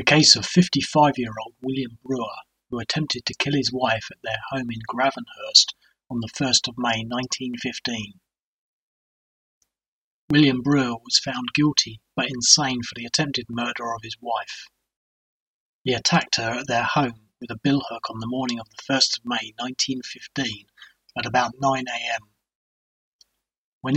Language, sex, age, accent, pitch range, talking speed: English, male, 30-49, British, 115-135 Hz, 150 wpm